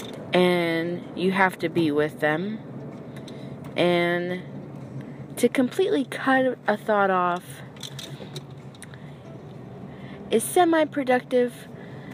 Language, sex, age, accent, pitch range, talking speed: English, female, 20-39, American, 160-205 Hz, 80 wpm